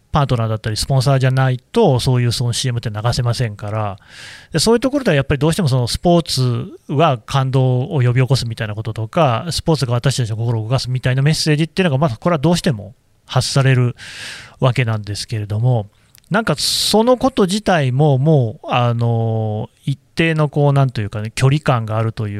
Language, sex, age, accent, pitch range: Japanese, male, 30-49, native, 115-170 Hz